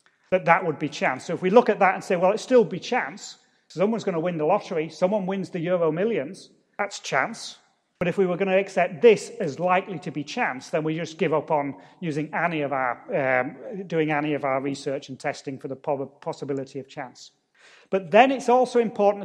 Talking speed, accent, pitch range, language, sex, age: 225 wpm, British, 160-215 Hz, English, male, 40-59